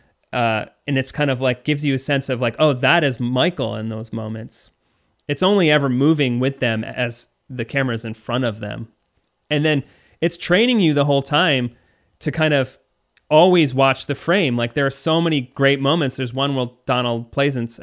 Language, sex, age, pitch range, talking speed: English, male, 30-49, 120-160 Hz, 200 wpm